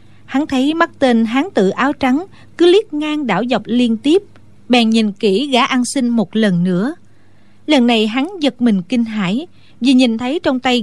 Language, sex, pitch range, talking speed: Vietnamese, female, 215-275 Hz, 200 wpm